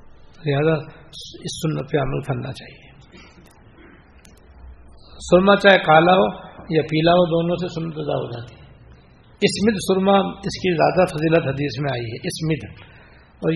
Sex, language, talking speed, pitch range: male, Urdu, 140 wpm, 120-170 Hz